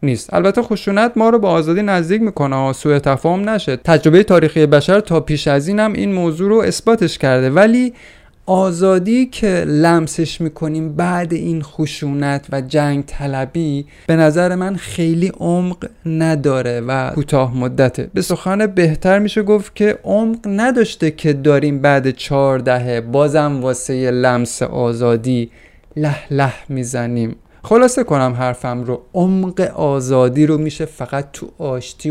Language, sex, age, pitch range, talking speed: Persian, male, 30-49, 130-175 Hz, 140 wpm